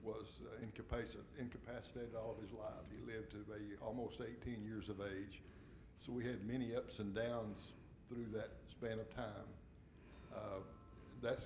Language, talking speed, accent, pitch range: English, 160 wpm, American, 110-125 Hz